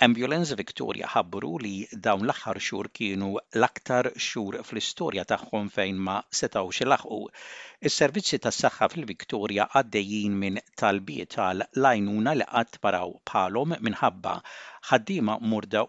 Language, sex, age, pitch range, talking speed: English, male, 60-79, 110-155 Hz, 115 wpm